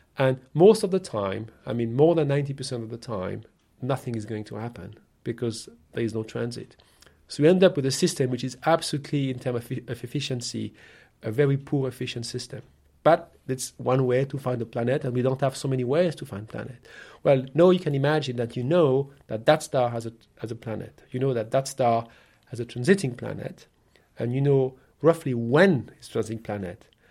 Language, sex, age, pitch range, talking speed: English, male, 40-59, 115-140 Hz, 210 wpm